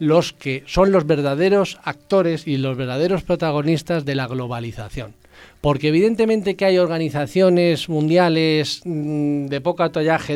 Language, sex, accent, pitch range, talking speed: Spanish, male, Spanish, 140-180 Hz, 125 wpm